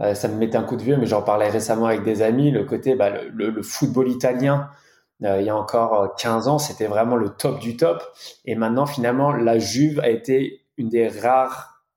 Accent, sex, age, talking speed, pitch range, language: French, male, 20-39, 225 wpm, 110-130 Hz, French